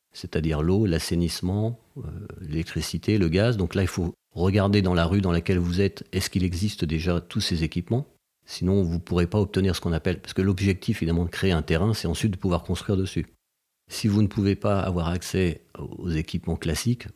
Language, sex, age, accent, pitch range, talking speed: French, male, 40-59, French, 85-105 Hz, 205 wpm